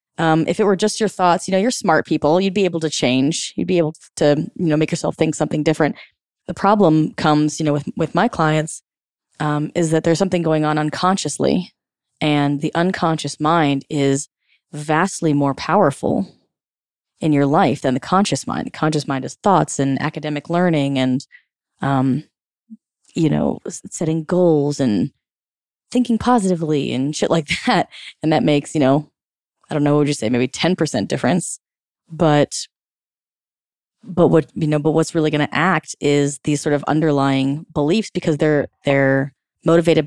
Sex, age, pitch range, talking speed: female, 20-39, 145-175 Hz, 175 wpm